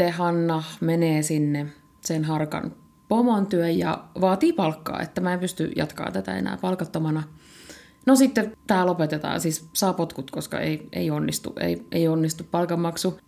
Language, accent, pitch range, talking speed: Finnish, native, 160-185 Hz, 140 wpm